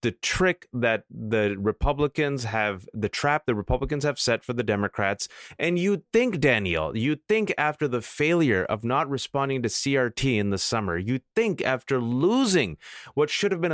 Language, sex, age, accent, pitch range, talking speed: English, male, 30-49, American, 130-195 Hz, 175 wpm